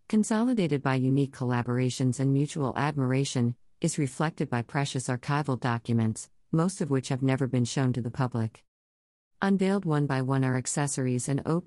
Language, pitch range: English, 125-150 Hz